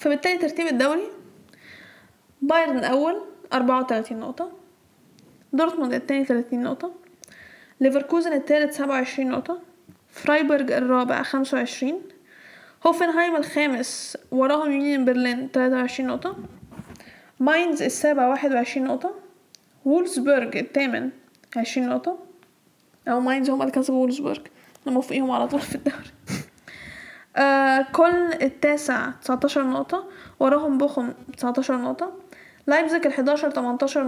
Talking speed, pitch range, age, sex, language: 100 wpm, 260-320 Hz, 10-29, female, Arabic